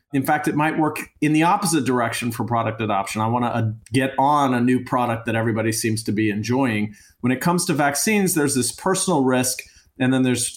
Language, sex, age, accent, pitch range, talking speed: English, male, 40-59, American, 115-145 Hz, 215 wpm